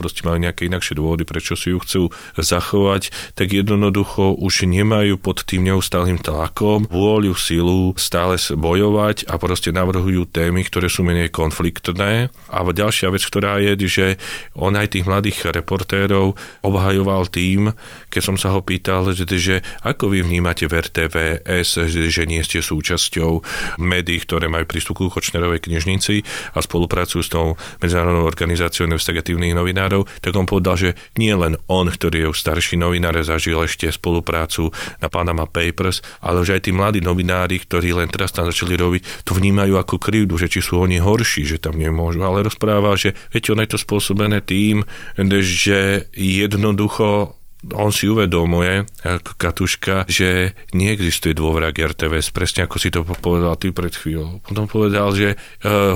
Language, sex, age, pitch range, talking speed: Slovak, male, 30-49, 85-100 Hz, 160 wpm